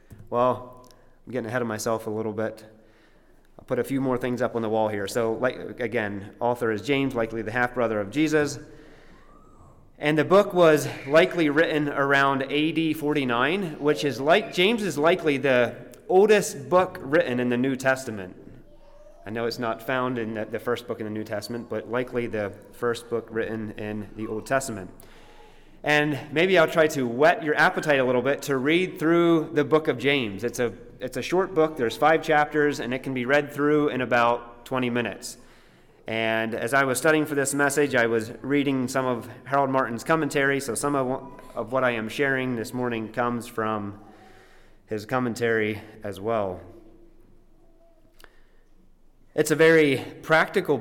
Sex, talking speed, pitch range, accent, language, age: male, 175 wpm, 115-150 Hz, American, English, 30-49